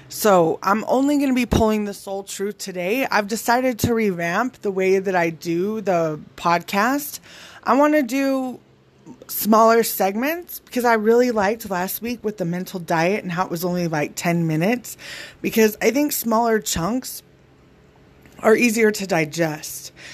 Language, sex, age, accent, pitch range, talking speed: English, female, 20-39, American, 175-220 Hz, 165 wpm